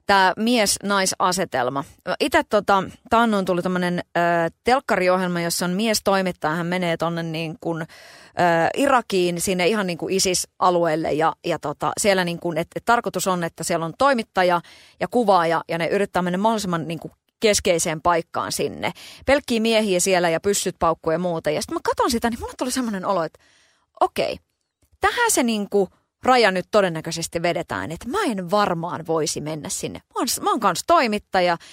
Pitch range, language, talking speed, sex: 175-250 Hz, Finnish, 165 wpm, female